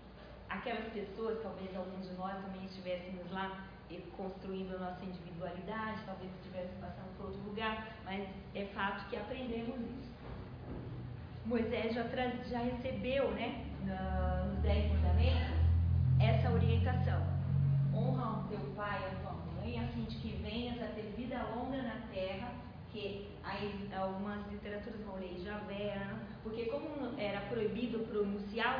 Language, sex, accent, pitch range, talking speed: Portuguese, female, Brazilian, 190-240 Hz, 140 wpm